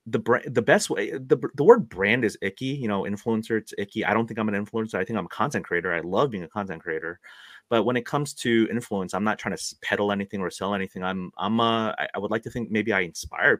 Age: 30-49